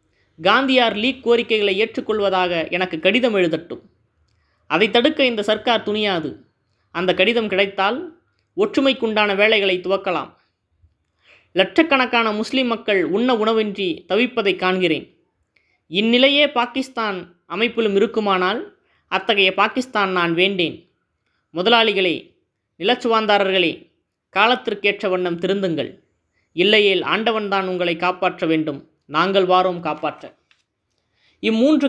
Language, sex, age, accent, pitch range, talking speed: Tamil, female, 20-39, native, 180-230 Hz, 90 wpm